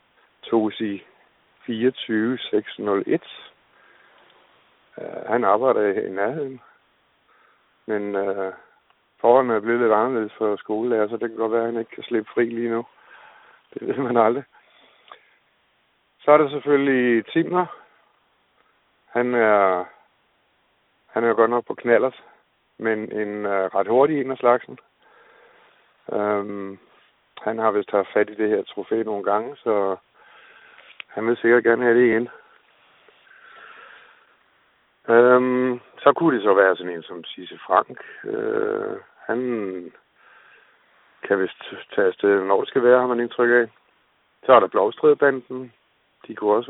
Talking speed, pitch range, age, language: 135 wpm, 105-130 Hz, 60-79, Danish